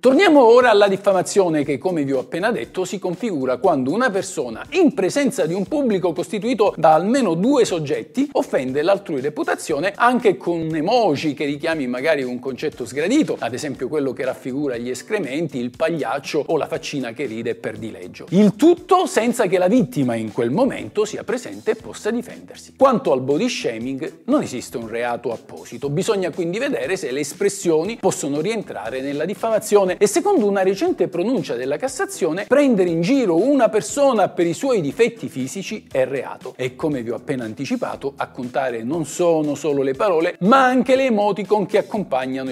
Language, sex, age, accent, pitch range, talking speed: Italian, male, 50-69, native, 145-220 Hz, 175 wpm